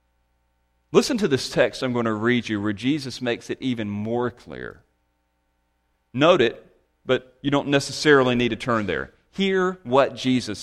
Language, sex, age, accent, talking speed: English, male, 40-59, American, 165 wpm